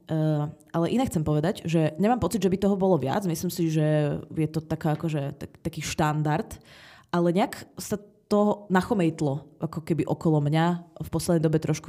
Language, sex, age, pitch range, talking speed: Czech, female, 20-39, 155-180 Hz, 180 wpm